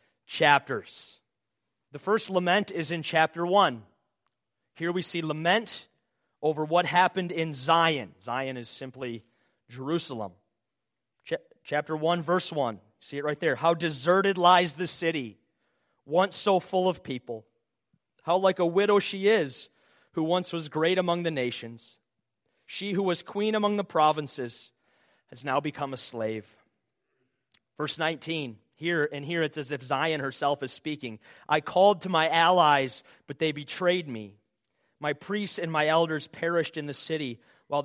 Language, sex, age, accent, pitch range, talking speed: English, male, 30-49, American, 135-175 Hz, 150 wpm